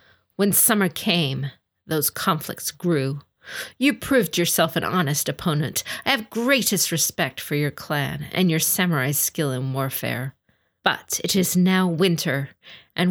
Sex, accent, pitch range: female, American, 140-180 Hz